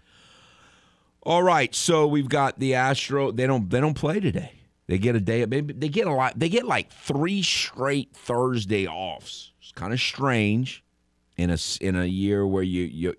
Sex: male